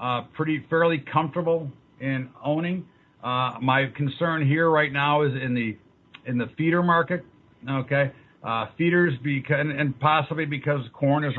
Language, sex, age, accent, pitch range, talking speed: English, male, 50-69, American, 130-150 Hz, 155 wpm